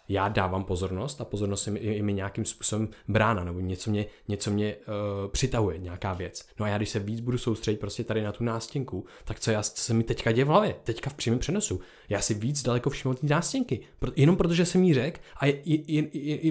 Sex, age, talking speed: male, 20-39, 245 wpm